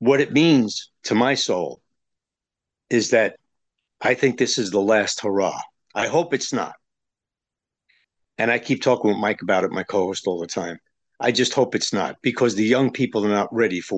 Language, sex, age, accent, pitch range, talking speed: English, male, 50-69, American, 110-140 Hz, 195 wpm